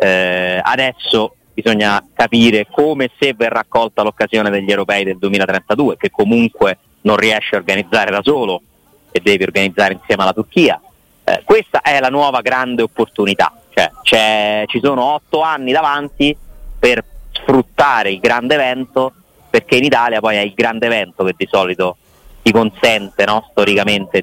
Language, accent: Italian, native